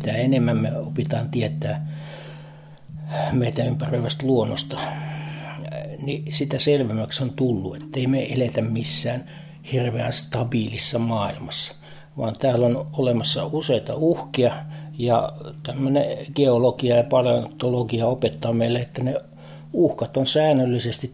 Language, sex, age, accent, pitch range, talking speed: Finnish, male, 60-79, native, 115-135 Hz, 110 wpm